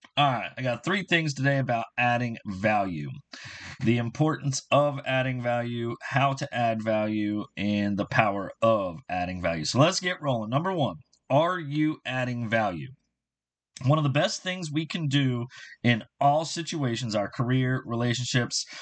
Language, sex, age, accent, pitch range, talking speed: English, male, 30-49, American, 115-150 Hz, 155 wpm